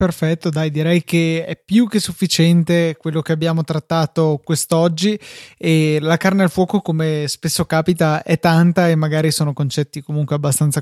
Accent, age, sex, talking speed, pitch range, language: native, 20-39, male, 160 wpm, 155-180 Hz, Italian